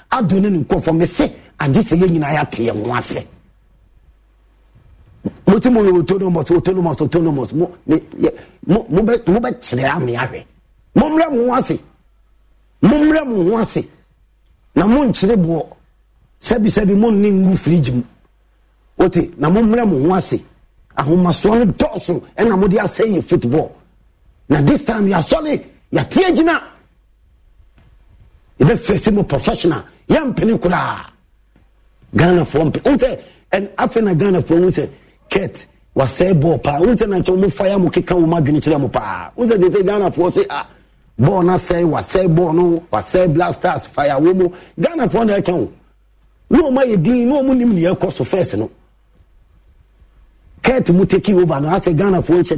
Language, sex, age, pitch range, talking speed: English, male, 50-69, 160-210 Hz, 150 wpm